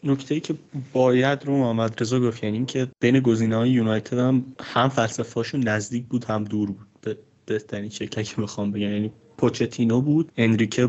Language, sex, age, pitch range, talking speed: Persian, male, 30-49, 110-130 Hz, 165 wpm